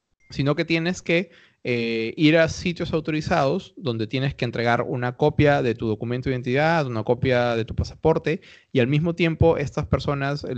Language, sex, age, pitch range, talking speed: Spanish, male, 20-39, 120-150 Hz, 175 wpm